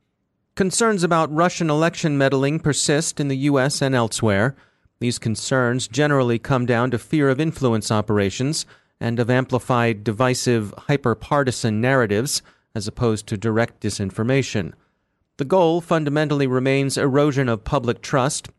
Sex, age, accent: male, 30-49, American